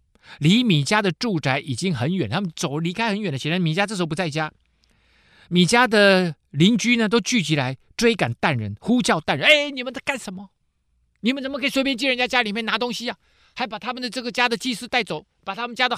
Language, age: Chinese, 50-69